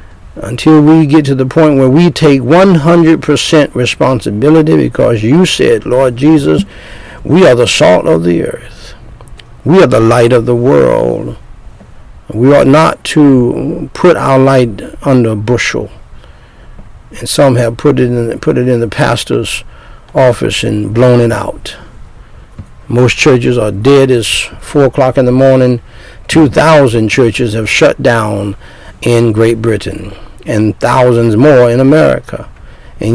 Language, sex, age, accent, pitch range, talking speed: English, male, 60-79, American, 105-135 Hz, 140 wpm